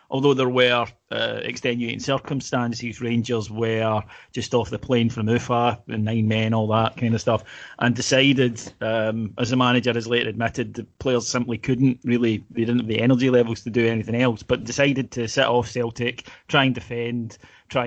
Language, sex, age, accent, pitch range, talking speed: English, male, 30-49, British, 115-130 Hz, 190 wpm